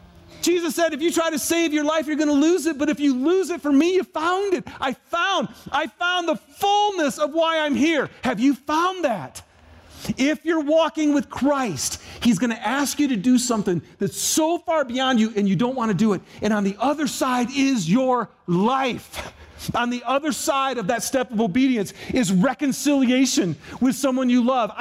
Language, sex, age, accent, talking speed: English, male, 40-59, American, 210 wpm